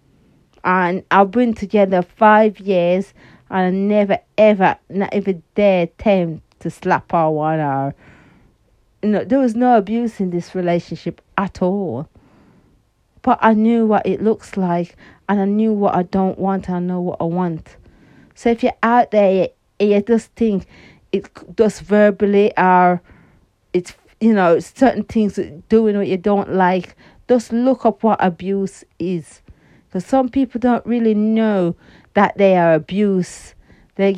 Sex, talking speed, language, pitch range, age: female, 160 wpm, English, 180-230 Hz, 40-59